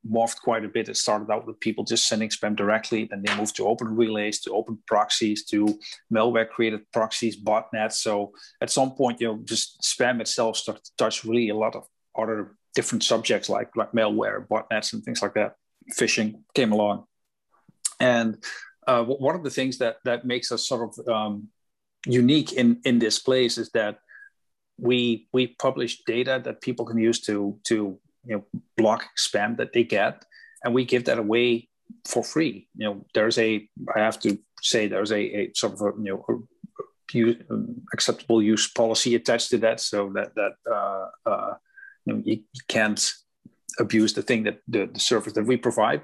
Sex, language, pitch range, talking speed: male, English, 110-125 Hz, 185 wpm